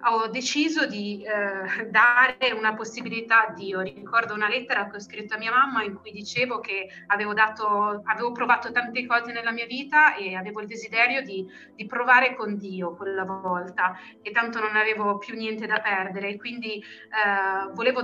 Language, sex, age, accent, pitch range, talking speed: Italian, female, 30-49, native, 200-245 Hz, 180 wpm